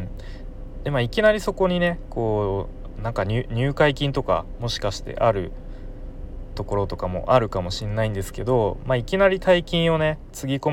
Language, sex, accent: Japanese, male, native